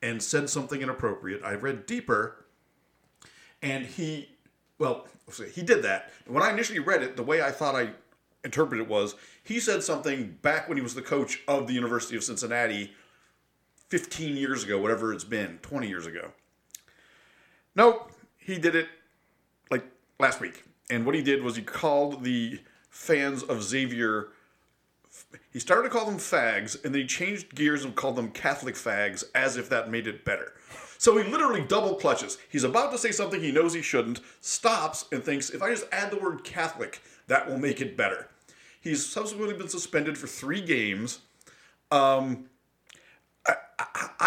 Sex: male